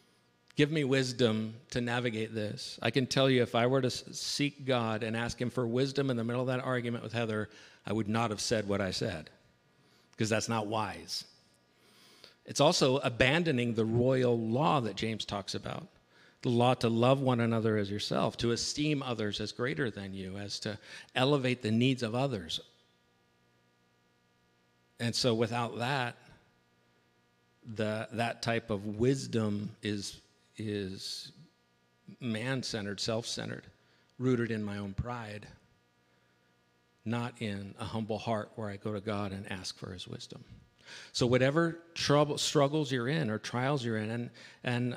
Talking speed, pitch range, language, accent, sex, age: 155 wpm, 100-130 Hz, English, American, male, 50-69